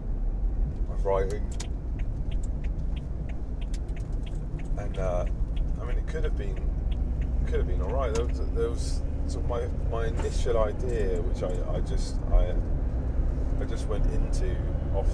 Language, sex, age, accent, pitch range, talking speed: English, male, 30-49, British, 70-90 Hz, 140 wpm